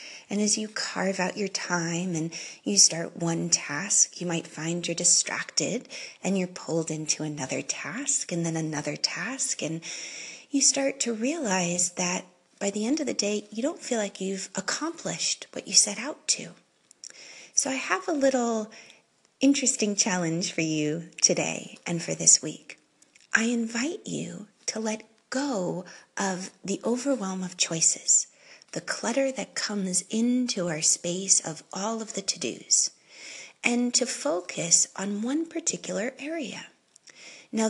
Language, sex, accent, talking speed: English, female, American, 150 wpm